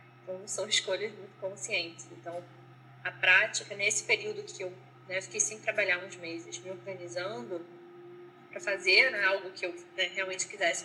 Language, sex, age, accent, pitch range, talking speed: Portuguese, female, 20-39, Brazilian, 175-220 Hz, 165 wpm